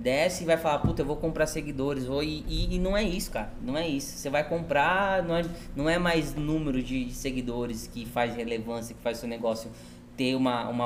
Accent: Brazilian